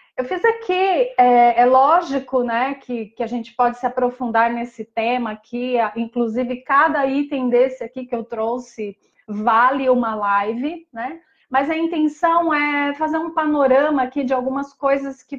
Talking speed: 160 wpm